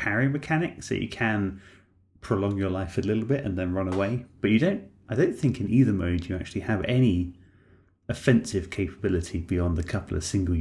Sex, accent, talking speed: male, British, 200 wpm